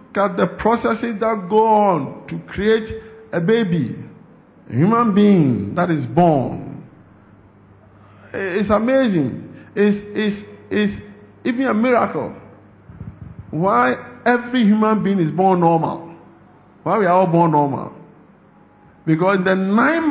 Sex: male